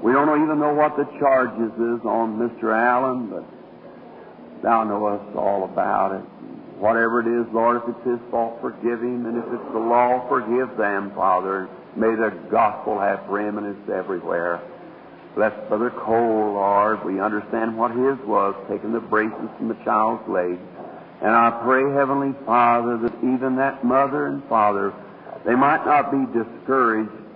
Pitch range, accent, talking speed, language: 105-125 Hz, American, 160 wpm, English